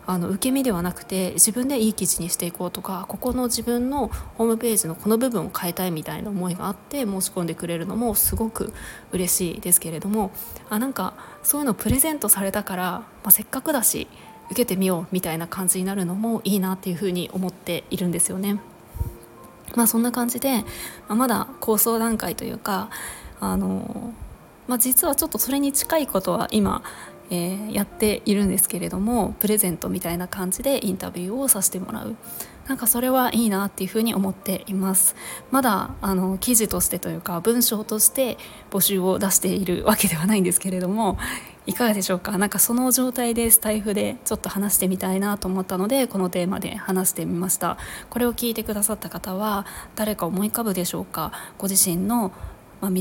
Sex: female